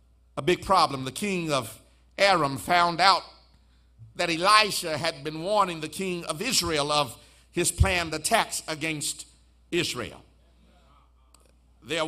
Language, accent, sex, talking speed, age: English, American, male, 120 wpm, 50-69